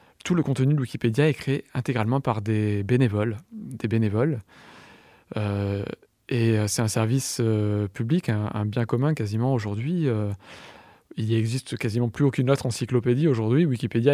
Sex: male